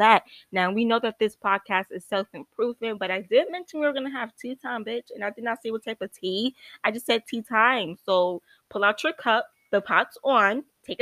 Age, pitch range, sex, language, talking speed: 20-39, 190-230 Hz, female, English, 235 wpm